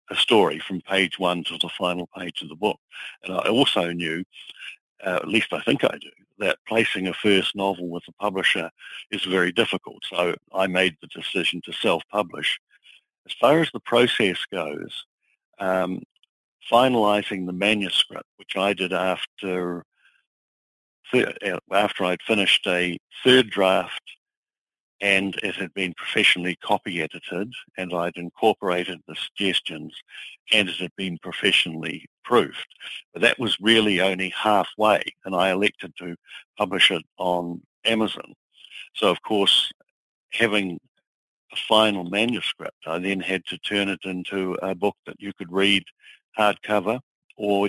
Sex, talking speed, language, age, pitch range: male, 145 wpm, English, 50-69, 90-105 Hz